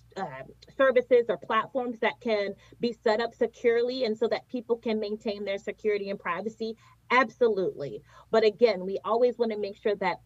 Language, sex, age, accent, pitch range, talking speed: English, female, 30-49, American, 190-235 Hz, 175 wpm